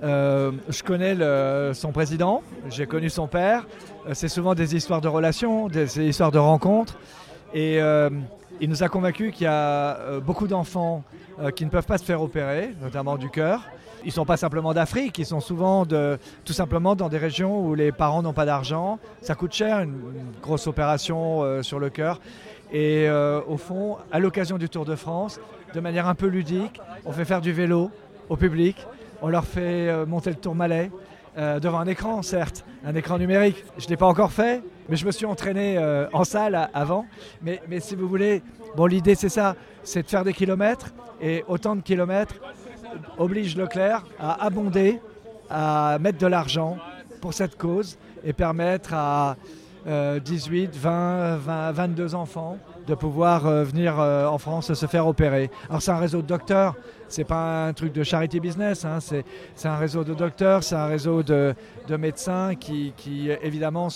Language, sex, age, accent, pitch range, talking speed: French, male, 40-59, French, 155-185 Hz, 190 wpm